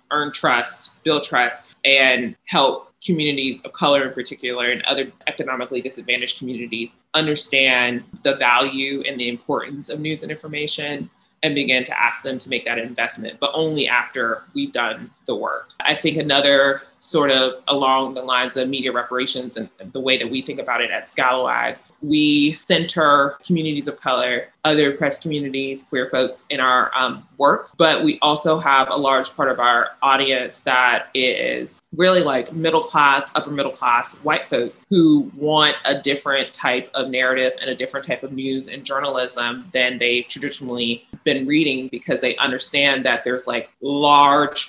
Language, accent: English, American